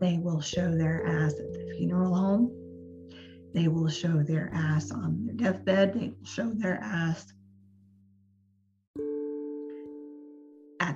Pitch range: 130-195 Hz